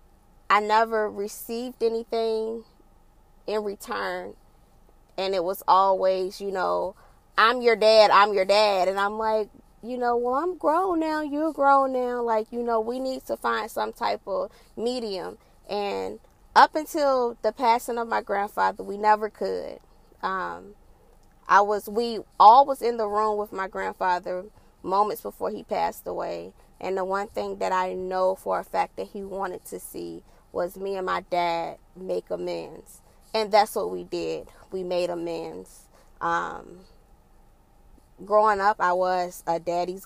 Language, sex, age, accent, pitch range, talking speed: English, female, 20-39, American, 175-220 Hz, 160 wpm